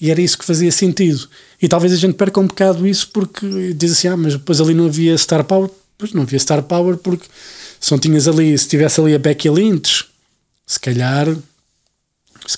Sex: male